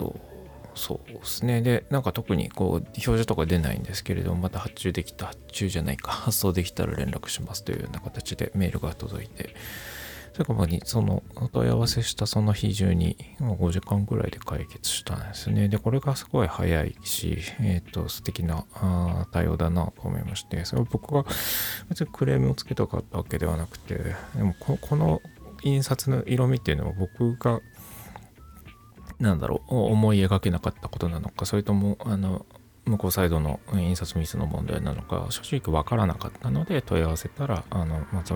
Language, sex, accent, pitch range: Japanese, male, native, 90-110 Hz